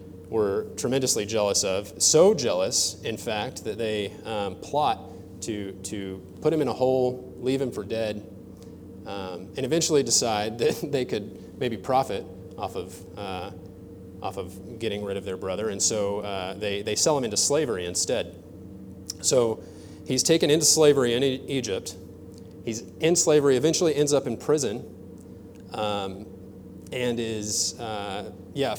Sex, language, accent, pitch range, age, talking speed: male, English, American, 95-125 Hz, 30-49, 150 wpm